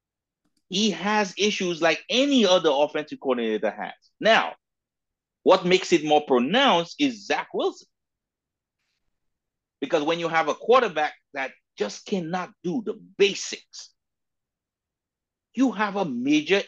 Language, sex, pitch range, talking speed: English, male, 145-210 Hz, 120 wpm